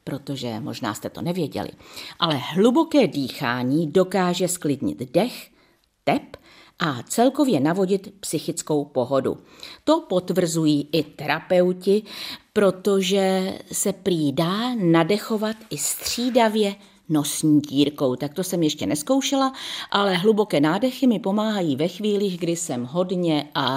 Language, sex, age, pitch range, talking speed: Czech, female, 50-69, 150-215 Hz, 115 wpm